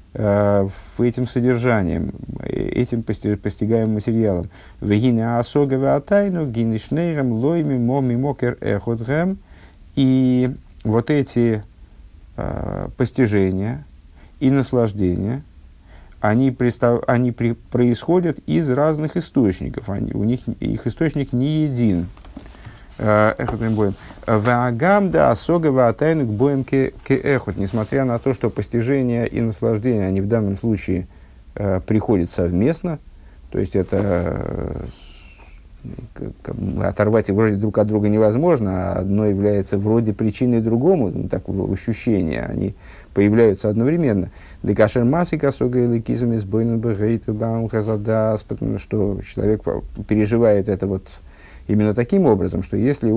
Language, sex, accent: Russian, male, native